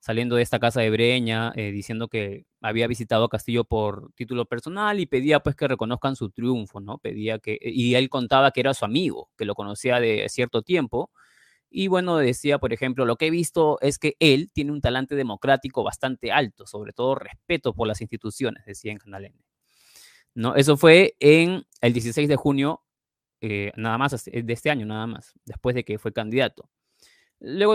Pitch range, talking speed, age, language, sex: 115-145 Hz, 190 wpm, 20-39, Spanish, male